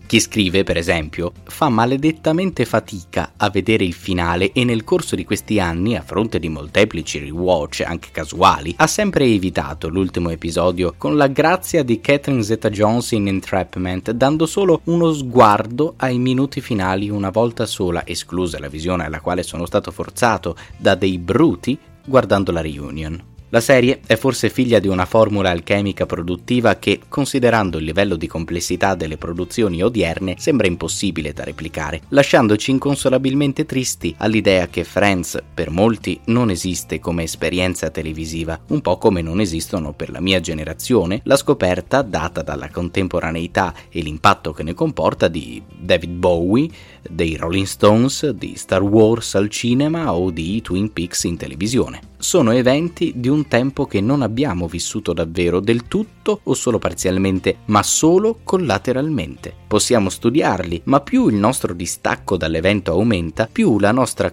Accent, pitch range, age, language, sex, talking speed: native, 85-120 Hz, 20-39, Italian, male, 150 wpm